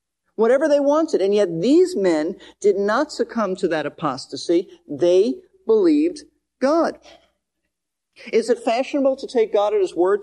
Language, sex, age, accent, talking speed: English, male, 40-59, American, 145 wpm